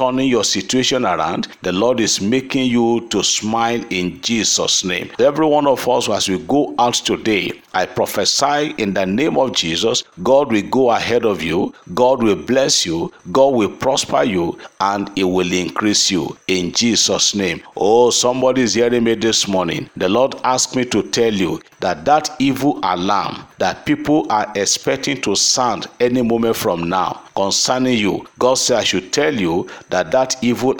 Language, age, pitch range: English, 50-69, 100-130 Hz